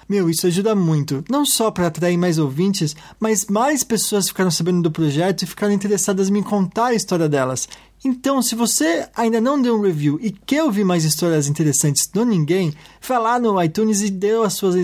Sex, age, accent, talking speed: male, 20-39, Brazilian, 200 wpm